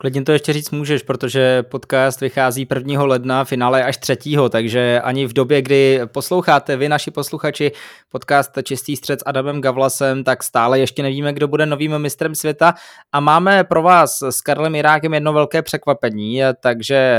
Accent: native